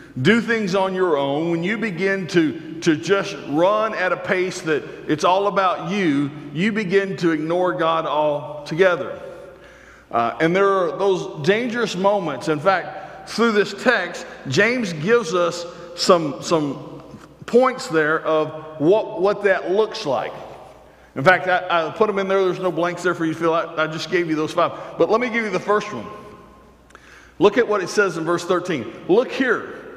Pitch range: 170-235 Hz